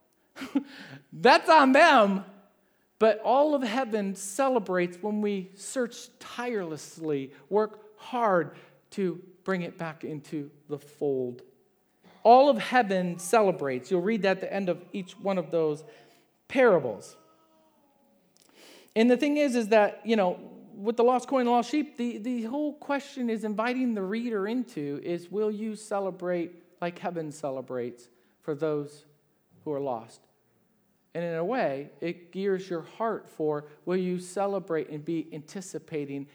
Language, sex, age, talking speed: English, male, 50-69, 145 wpm